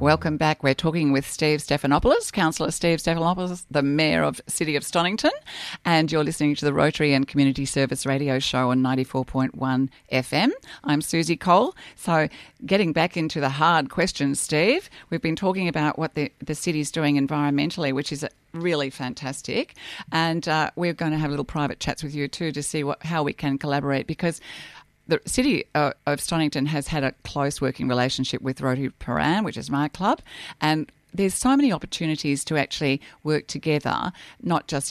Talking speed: 180 wpm